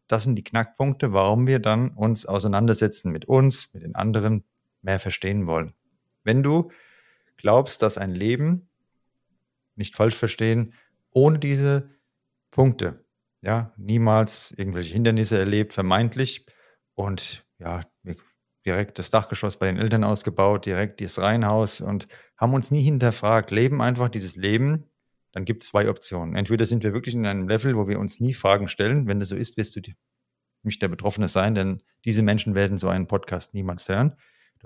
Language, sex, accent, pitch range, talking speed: German, male, German, 100-120 Hz, 165 wpm